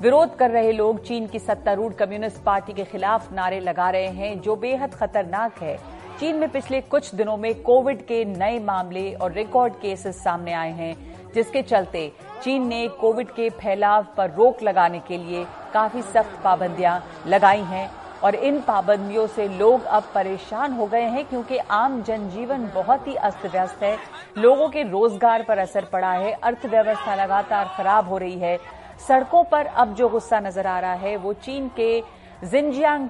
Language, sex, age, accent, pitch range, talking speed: Hindi, female, 50-69, native, 195-240 Hz, 175 wpm